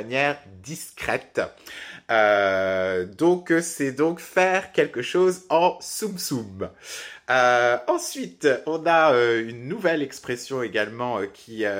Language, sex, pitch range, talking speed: French, male, 115-155 Hz, 110 wpm